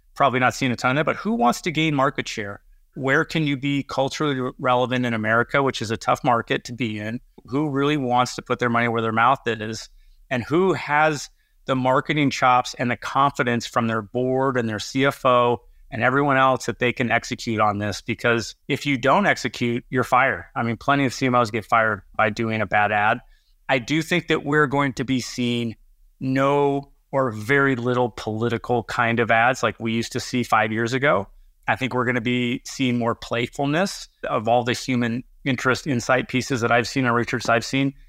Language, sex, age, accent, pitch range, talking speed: English, male, 30-49, American, 115-135 Hz, 210 wpm